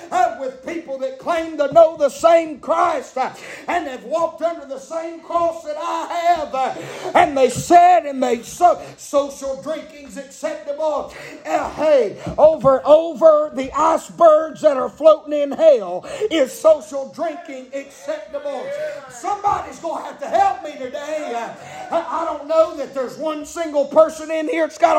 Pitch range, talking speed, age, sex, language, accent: 295-340 Hz, 165 wpm, 50-69, male, English, American